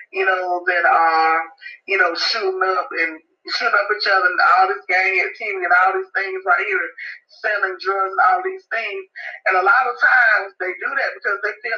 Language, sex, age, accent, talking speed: English, male, 30-49, American, 215 wpm